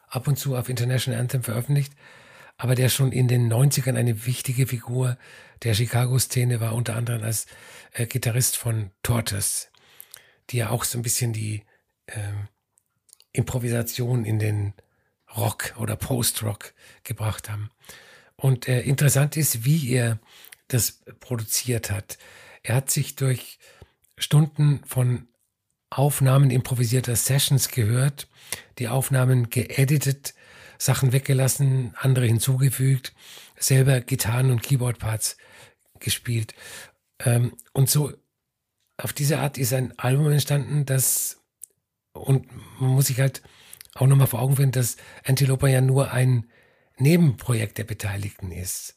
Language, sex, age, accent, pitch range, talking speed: German, male, 50-69, German, 115-135 Hz, 125 wpm